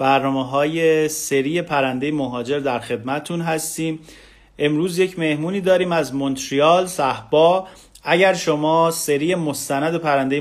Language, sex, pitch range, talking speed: Persian, male, 135-165 Hz, 115 wpm